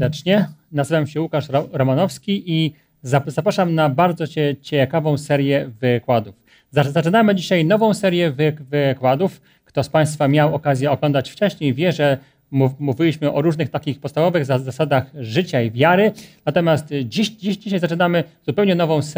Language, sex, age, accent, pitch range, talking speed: Polish, male, 40-59, native, 145-190 Hz, 125 wpm